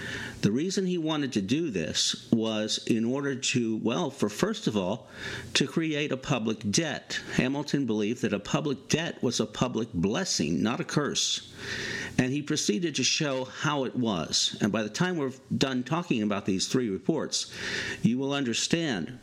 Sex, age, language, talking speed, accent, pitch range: male, 50-69, English, 175 wpm, American, 110-155 Hz